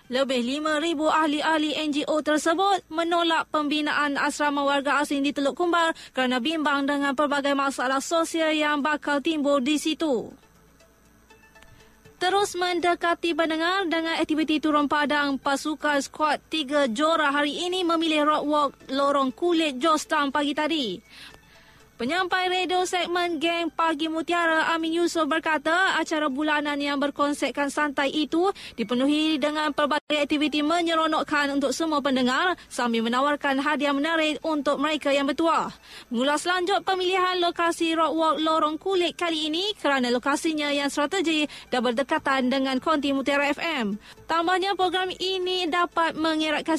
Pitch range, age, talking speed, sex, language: 285-330 Hz, 20-39, 130 wpm, female, Malay